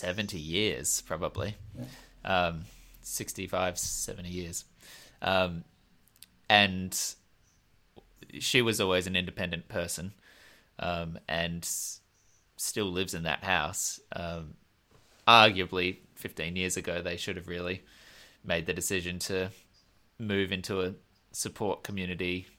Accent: Australian